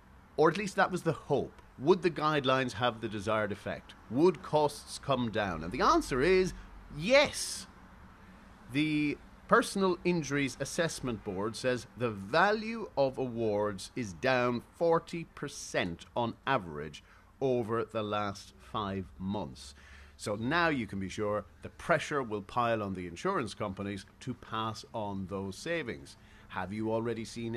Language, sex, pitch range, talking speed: English, male, 100-150 Hz, 145 wpm